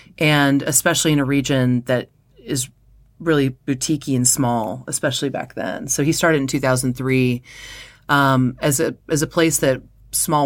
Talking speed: 155 wpm